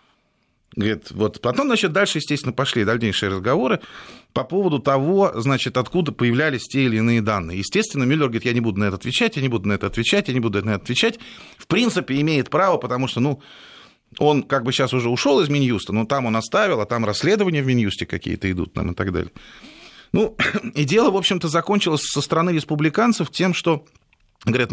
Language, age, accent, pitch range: Russian, 30-49, native, 110-155 Hz